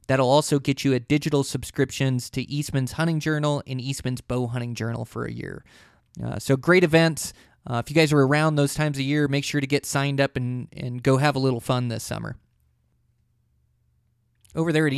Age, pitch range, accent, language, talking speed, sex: 20-39, 125-150 Hz, American, English, 205 wpm, male